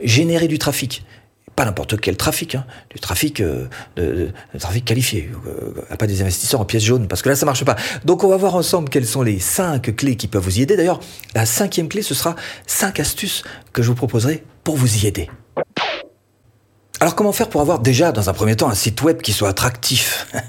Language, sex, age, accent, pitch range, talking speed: French, male, 40-59, French, 110-155 Hz, 215 wpm